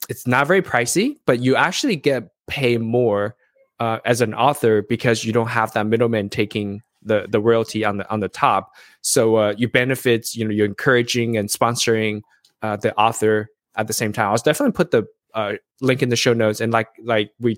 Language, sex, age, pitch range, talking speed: English, male, 20-39, 110-140 Hz, 205 wpm